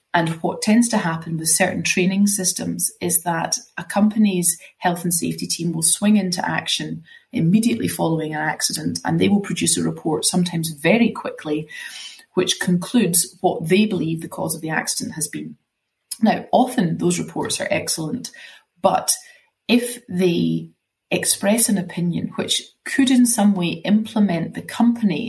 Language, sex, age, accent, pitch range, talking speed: English, female, 30-49, British, 165-215 Hz, 155 wpm